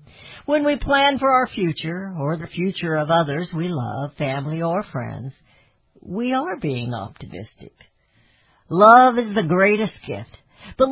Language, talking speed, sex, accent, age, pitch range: English, 145 wpm, female, American, 60-79, 155-235 Hz